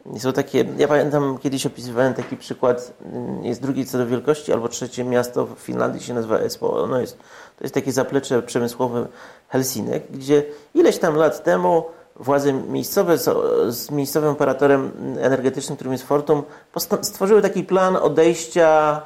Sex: male